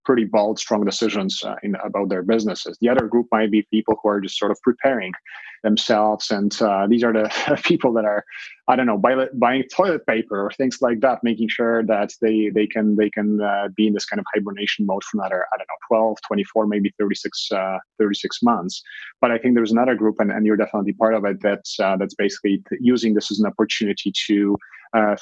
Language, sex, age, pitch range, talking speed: English, male, 30-49, 105-115 Hz, 220 wpm